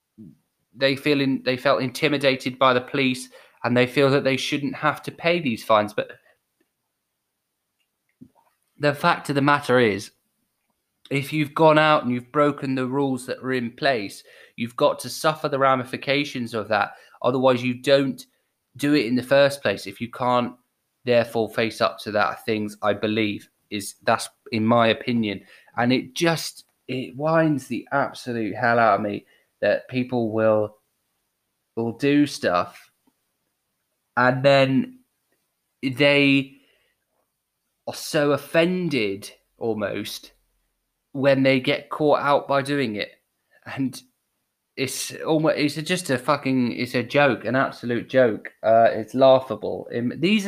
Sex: male